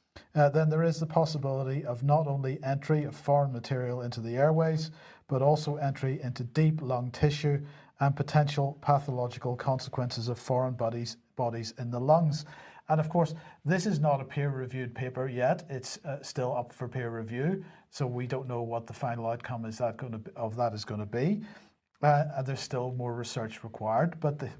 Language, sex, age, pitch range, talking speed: English, male, 50-69, 125-150 Hz, 195 wpm